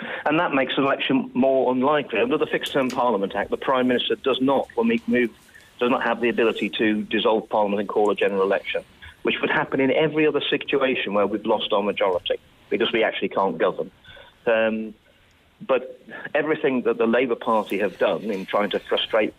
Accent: British